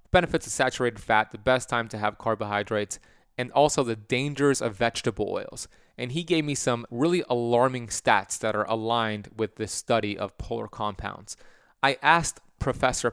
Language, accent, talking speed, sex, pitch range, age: English, American, 170 wpm, male, 110-135 Hz, 30-49